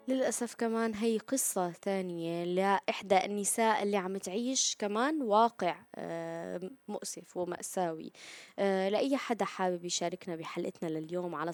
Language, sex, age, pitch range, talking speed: Arabic, female, 20-39, 170-205 Hz, 110 wpm